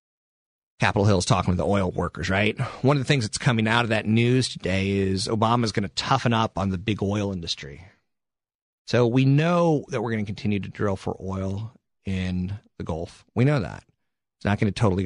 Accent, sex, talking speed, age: American, male, 220 wpm, 30-49